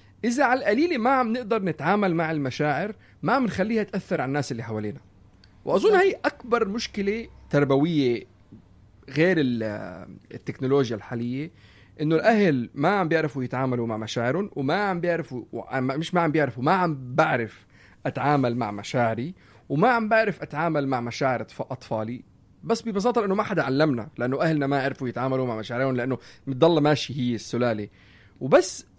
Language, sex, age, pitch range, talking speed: Arabic, male, 30-49, 120-175 Hz, 150 wpm